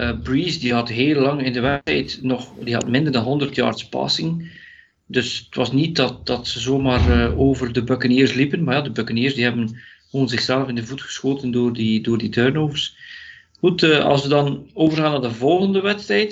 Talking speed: 205 wpm